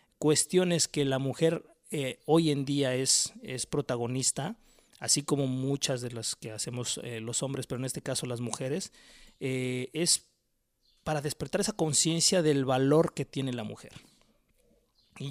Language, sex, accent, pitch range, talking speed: Spanish, male, Mexican, 130-160 Hz, 155 wpm